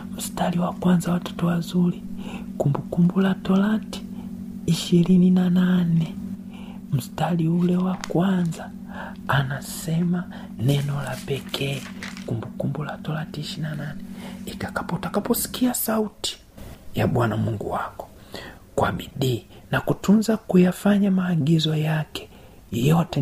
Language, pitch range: Swahili, 140-205 Hz